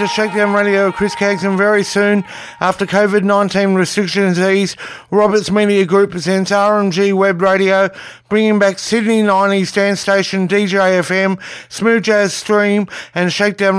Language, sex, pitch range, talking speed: English, male, 195-210 Hz, 130 wpm